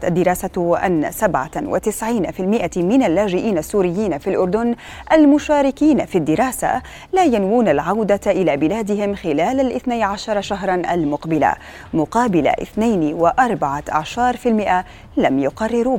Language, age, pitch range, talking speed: Arabic, 30-49, 180-245 Hz, 100 wpm